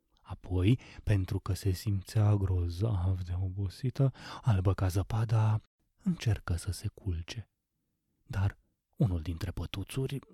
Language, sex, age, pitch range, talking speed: Romanian, male, 30-49, 100-135 Hz, 110 wpm